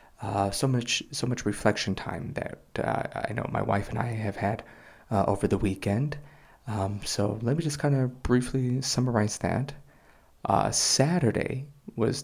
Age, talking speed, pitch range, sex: 30-49, 165 wpm, 100-125 Hz, male